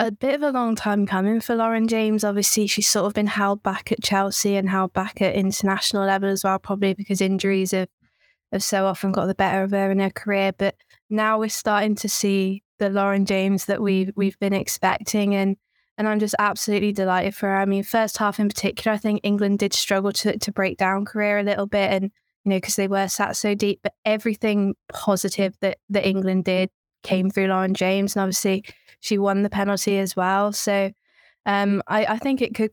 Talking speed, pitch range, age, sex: 220 wpm, 195-215 Hz, 20-39, female